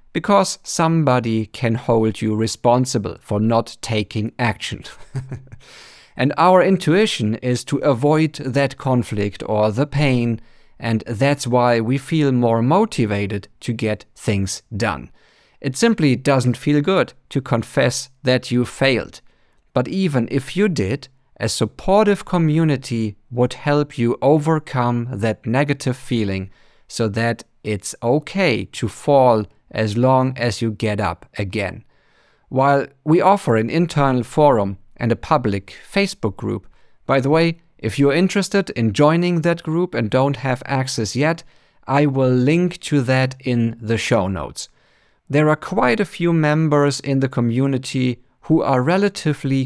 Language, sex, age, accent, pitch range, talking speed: English, male, 50-69, German, 115-150 Hz, 140 wpm